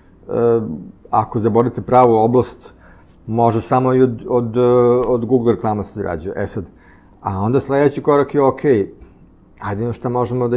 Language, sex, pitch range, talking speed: English, male, 105-130 Hz, 155 wpm